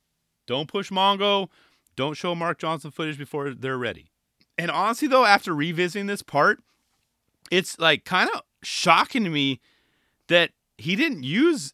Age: 30-49